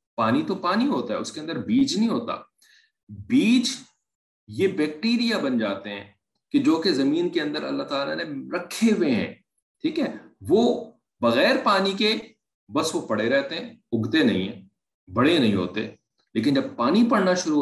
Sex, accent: male, Indian